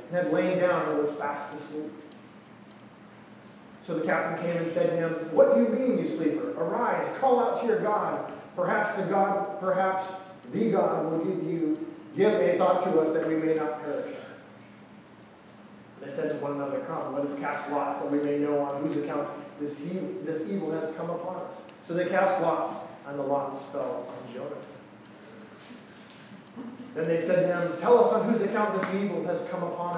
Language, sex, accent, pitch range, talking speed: English, male, American, 150-195 Hz, 190 wpm